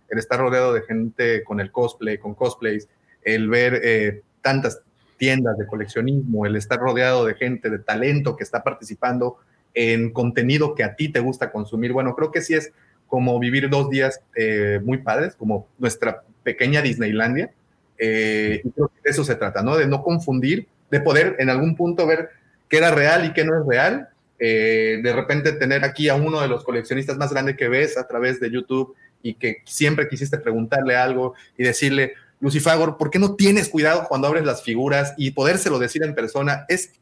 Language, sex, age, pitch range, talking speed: Spanish, male, 30-49, 115-150 Hz, 190 wpm